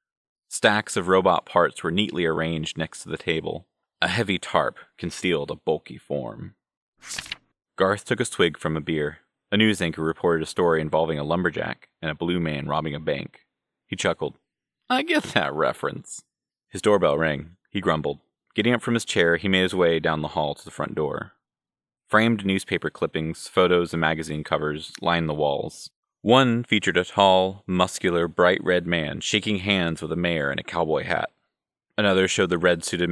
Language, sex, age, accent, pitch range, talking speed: English, male, 30-49, American, 80-95 Hz, 180 wpm